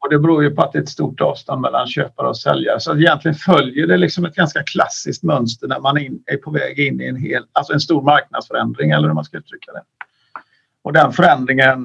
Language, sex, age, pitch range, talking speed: Swedish, male, 50-69, 135-170 Hz, 240 wpm